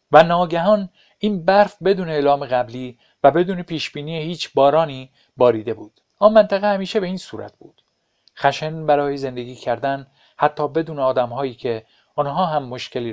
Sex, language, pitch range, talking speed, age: male, Persian, 135-165 Hz, 145 wpm, 50-69